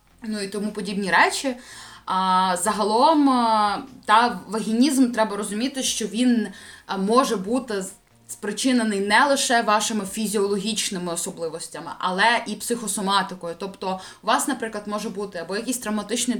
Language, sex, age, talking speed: Ukrainian, female, 20-39, 120 wpm